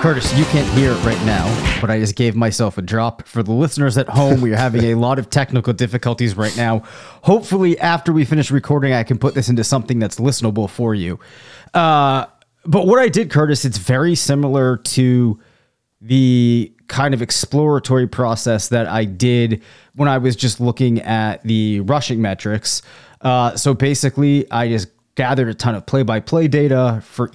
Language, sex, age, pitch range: English, male, 30-49, 110-135 Hz